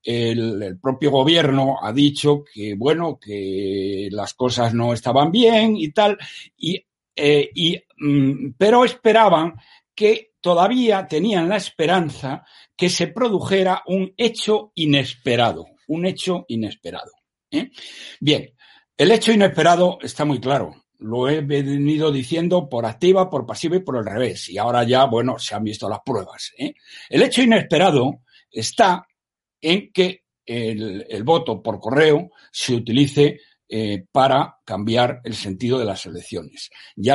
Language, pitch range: Spanish, 115-170 Hz